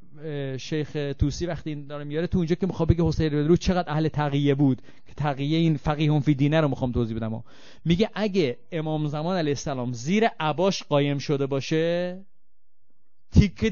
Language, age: Persian, 30-49